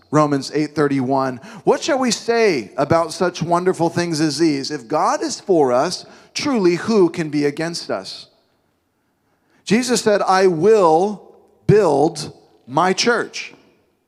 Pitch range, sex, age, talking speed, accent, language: 165-215 Hz, male, 40-59, 130 wpm, American, English